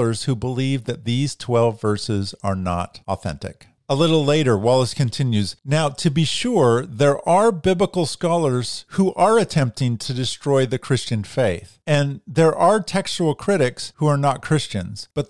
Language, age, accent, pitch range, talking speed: English, 50-69, American, 105-145 Hz, 155 wpm